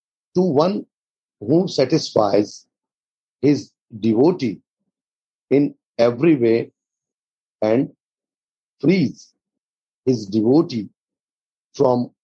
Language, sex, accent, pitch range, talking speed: English, male, Indian, 110-150 Hz, 70 wpm